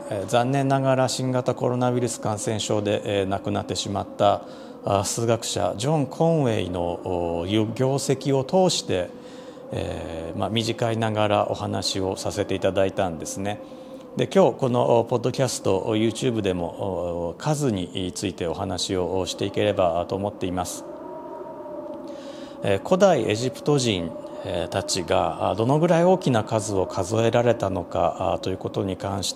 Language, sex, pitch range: Japanese, male, 95-130 Hz